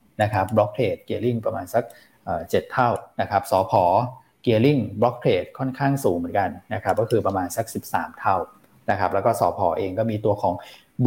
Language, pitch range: Thai, 100-125 Hz